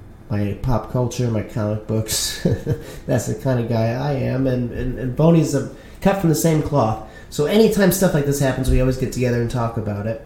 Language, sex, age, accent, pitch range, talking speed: English, male, 30-49, American, 115-150 Hz, 215 wpm